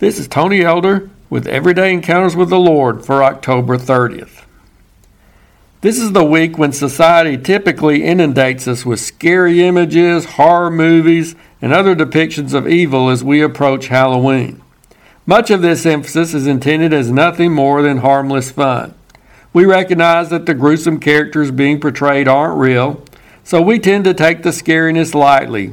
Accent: American